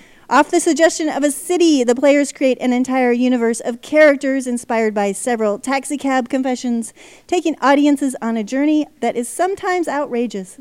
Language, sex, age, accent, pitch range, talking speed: English, female, 40-59, American, 205-280 Hz, 160 wpm